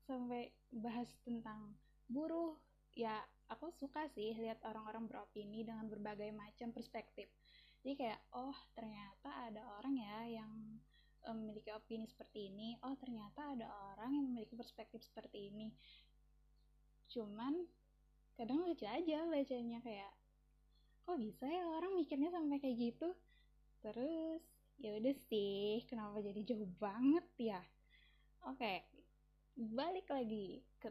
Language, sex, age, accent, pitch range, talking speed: Indonesian, female, 10-29, native, 215-260 Hz, 125 wpm